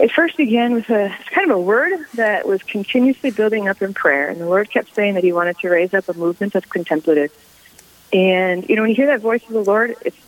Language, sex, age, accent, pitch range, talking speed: English, female, 30-49, American, 180-250 Hz, 250 wpm